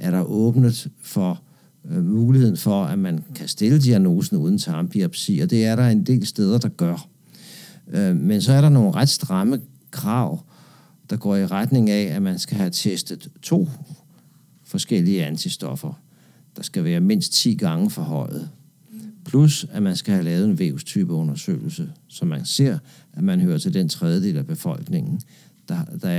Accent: native